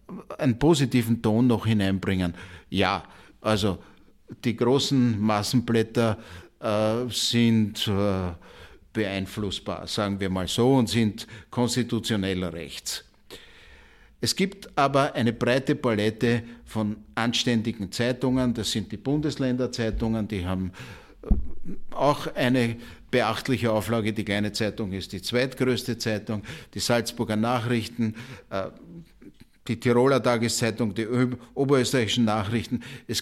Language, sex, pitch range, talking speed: German, male, 105-125 Hz, 110 wpm